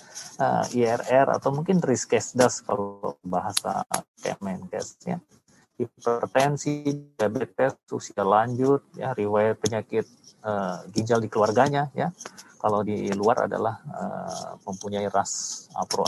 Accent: native